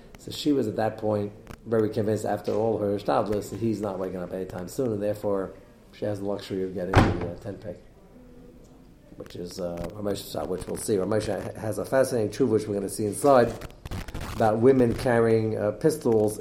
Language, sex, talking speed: English, male, 200 wpm